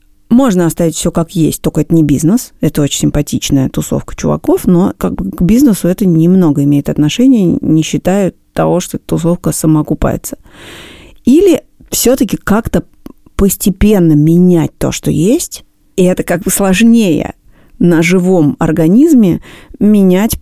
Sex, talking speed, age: female, 130 wpm, 30-49